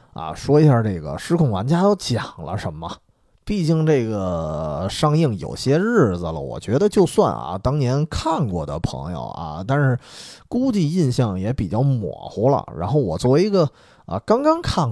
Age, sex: 20-39, male